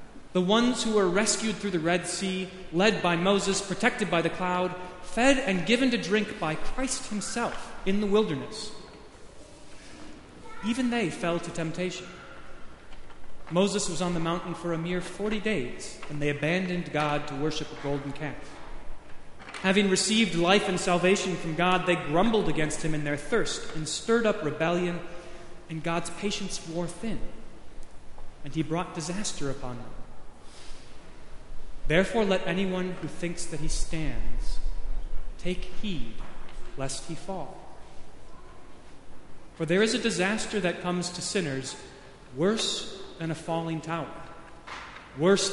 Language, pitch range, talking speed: English, 155-195 Hz, 140 wpm